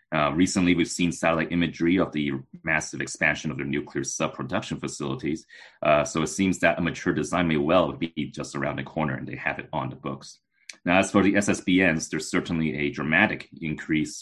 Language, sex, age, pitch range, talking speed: English, male, 30-49, 70-85 Hz, 200 wpm